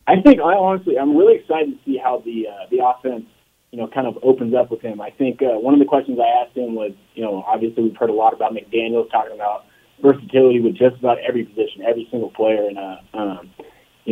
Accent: American